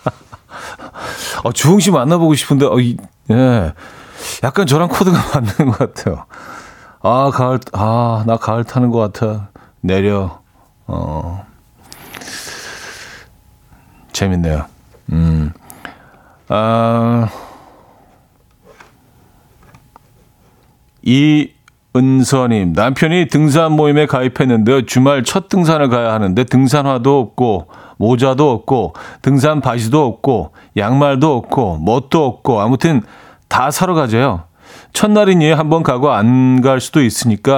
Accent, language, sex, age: native, Korean, male, 40-59